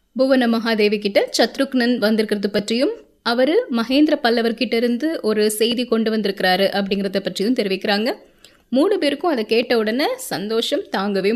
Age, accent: 20-39, native